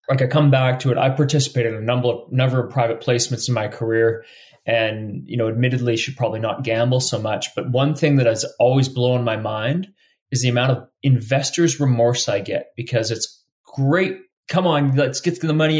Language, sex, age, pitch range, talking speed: English, male, 30-49, 120-145 Hz, 210 wpm